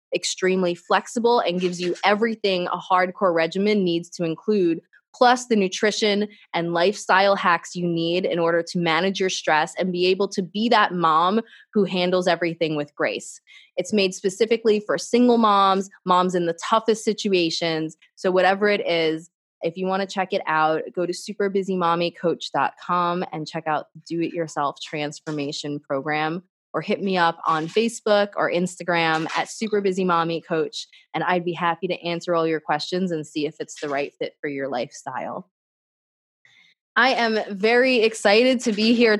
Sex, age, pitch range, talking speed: female, 20-39, 170-220 Hz, 165 wpm